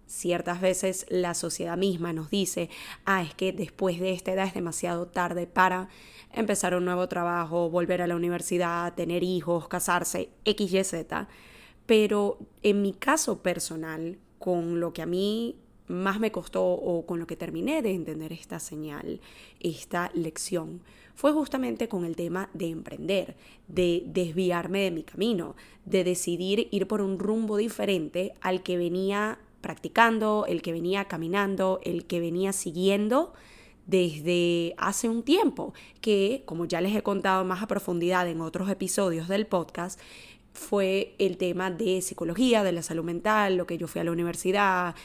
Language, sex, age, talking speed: Spanish, female, 20-39, 160 wpm